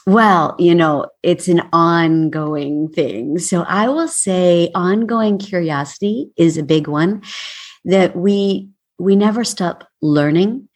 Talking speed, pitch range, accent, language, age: 130 wpm, 155-195 Hz, American, English, 50-69